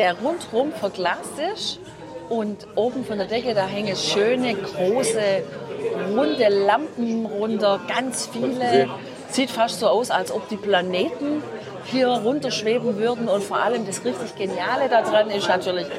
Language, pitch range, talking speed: German, 195-245 Hz, 145 wpm